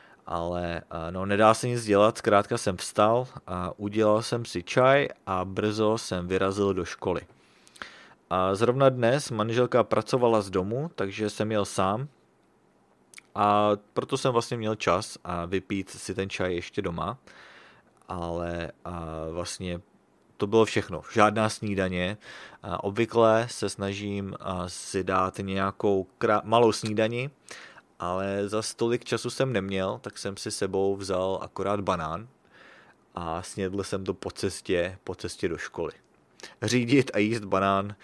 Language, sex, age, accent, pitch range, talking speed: English, male, 30-49, Czech, 95-115 Hz, 140 wpm